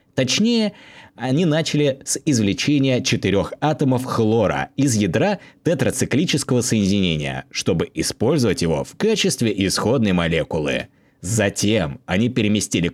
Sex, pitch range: male, 95-150 Hz